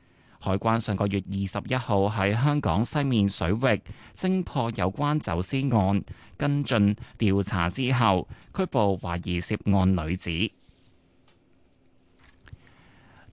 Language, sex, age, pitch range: Chinese, male, 20-39, 100-135 Hz